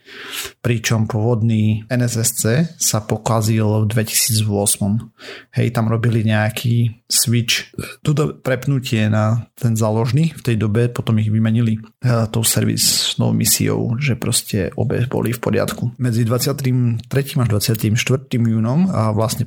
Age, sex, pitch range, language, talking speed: 40-59, male, 110-125 Hz, Slovak, 115 wpm